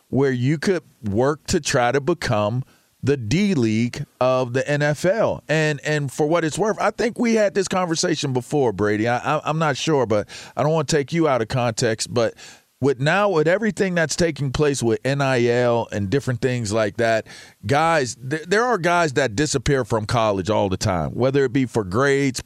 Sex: male